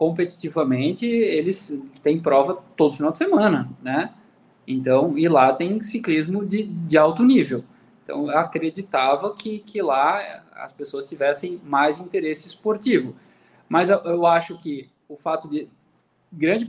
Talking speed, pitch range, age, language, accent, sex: 135 wpm, 150-215 Hz, 20-39, Portuguese, Brazilian, male